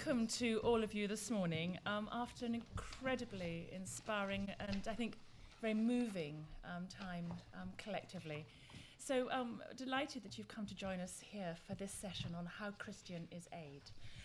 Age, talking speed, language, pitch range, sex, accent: 30-49, 170 wpm, English, 170-210 Hz, female, British